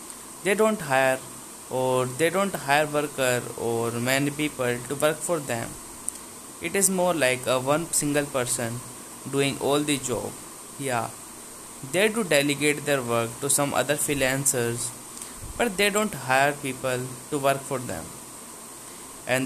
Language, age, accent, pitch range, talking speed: English, 20-39, Indian, 125-155 Hz, 145 wpm